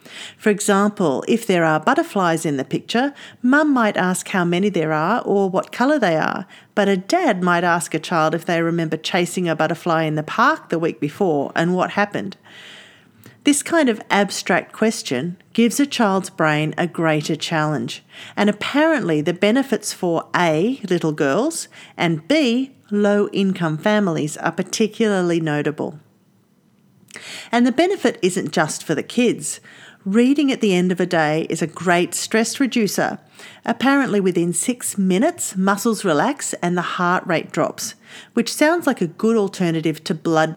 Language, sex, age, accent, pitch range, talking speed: English, female, 40-59, Australian, 165-230 Hz, 160 wpm